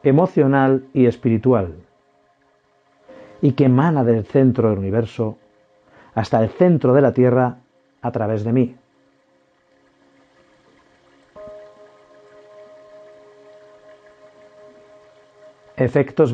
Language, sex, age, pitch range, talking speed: Spanish, male, 50-69, 110-160 Hz, 75 wpm